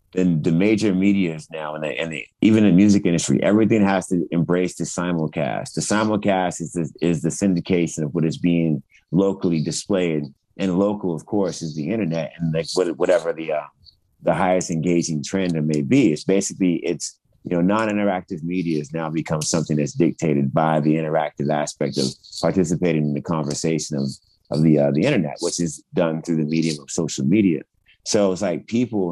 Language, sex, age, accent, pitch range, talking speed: English, male, 30-49, American, 80-95 Hz, 190 wpm